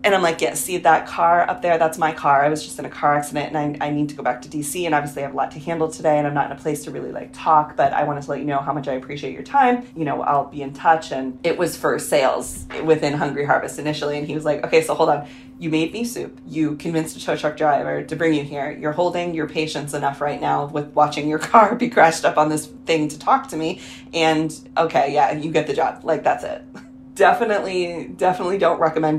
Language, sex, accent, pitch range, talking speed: English, female, American, 145-165 Hz, 275 wpm